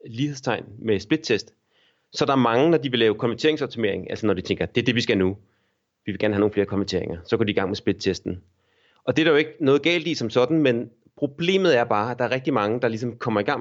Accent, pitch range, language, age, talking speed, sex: native, 105-140 Hz, Danish, 30-49, 275 wpm, male